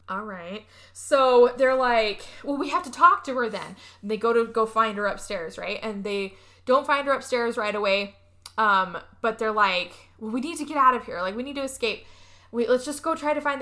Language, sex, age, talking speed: English, female, 10-29, 235 wpm